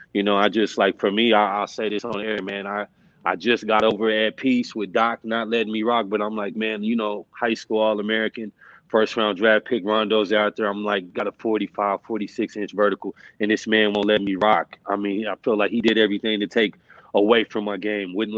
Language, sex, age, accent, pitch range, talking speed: English, male, 20-39, American, 105-115 Hz, 240 wpm